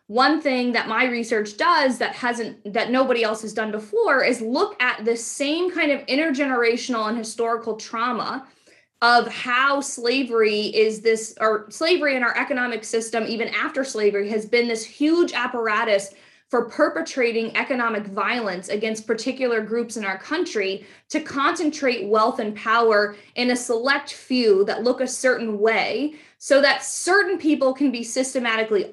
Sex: female